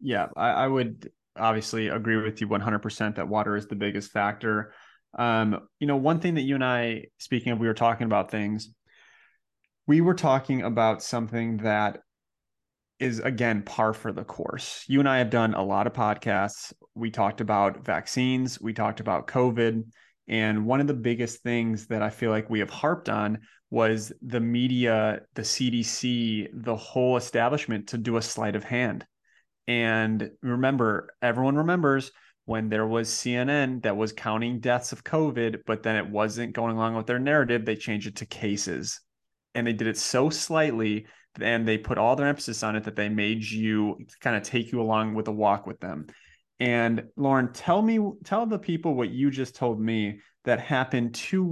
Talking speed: 185 wpm